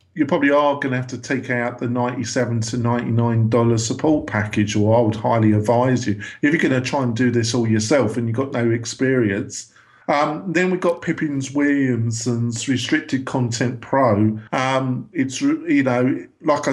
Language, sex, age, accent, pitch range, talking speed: English, male, 50-69, British, 115-140 Hz, 180 wpm